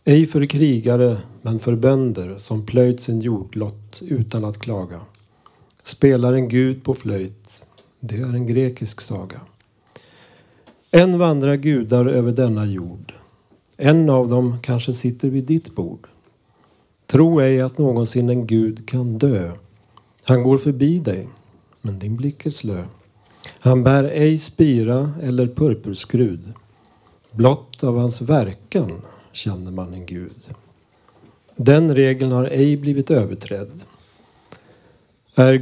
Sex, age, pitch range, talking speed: male, 40-59, 110-140 Hz, 125 wpm